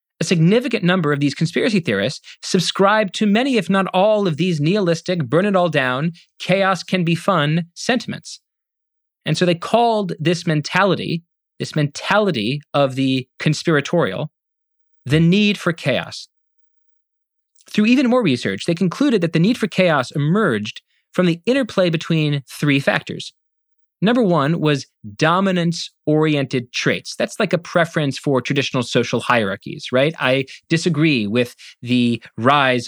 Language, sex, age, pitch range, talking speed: English, male, 30-49, 140-185 Hz, 130 wpm